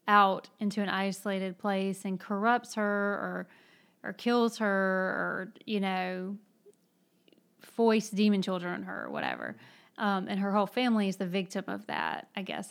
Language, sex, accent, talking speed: English, female, American, 160 wpm